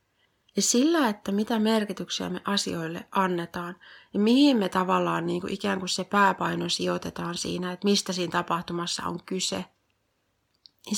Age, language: 30-49, Finnish